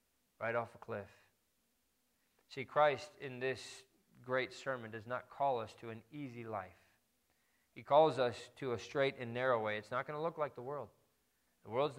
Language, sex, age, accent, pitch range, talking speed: English, male, 40-59, American, 115-135 Hz, 185 wpm